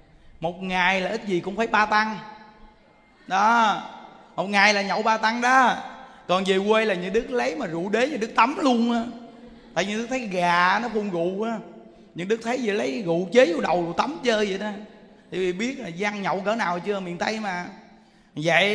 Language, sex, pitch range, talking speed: Vietnamese, male, 175-225 Hz, 210 wpm